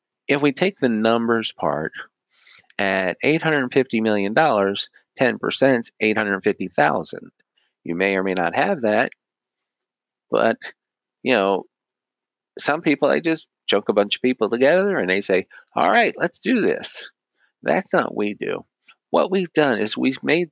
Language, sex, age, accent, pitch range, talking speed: English, male, 50-69, American, 105-135 Hz, 170 wpm